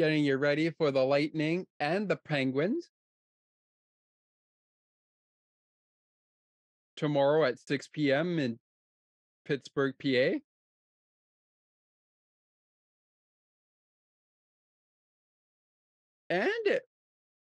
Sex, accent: male, American